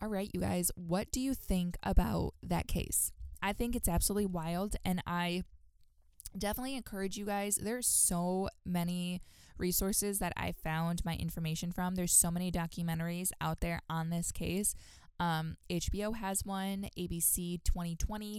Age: 10-29